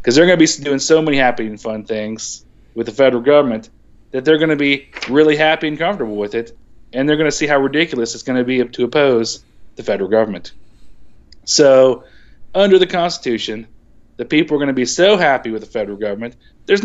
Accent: American